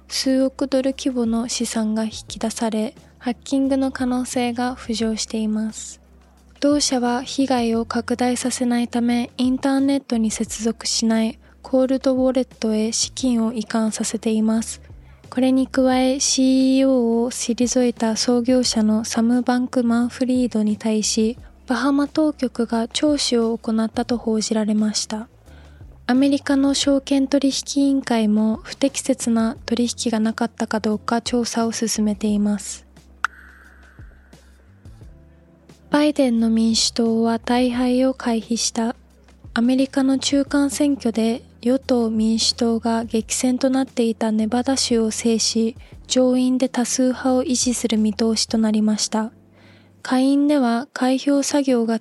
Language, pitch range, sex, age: Japanese, 225-260 Hz, female, 20-39